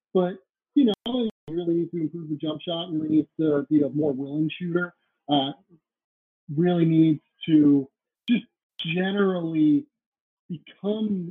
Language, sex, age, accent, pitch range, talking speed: English, male, 30-49, American, 150-190 Hz, 145 wpm